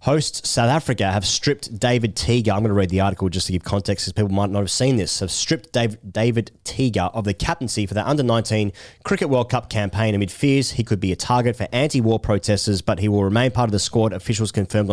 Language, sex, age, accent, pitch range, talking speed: English, male, 30-49, Australian, 105-130 Hz, 235 wpm